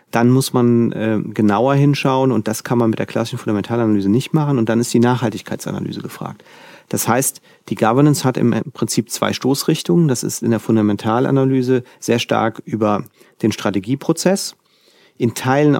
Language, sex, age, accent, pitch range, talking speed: German, male, 40-59, German, 115-135 Hz, 165 wpm